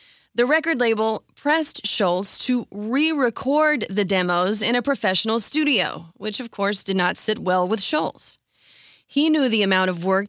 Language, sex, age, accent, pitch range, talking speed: English, female, 30-49, American, 195-255 Hz, 165 wpm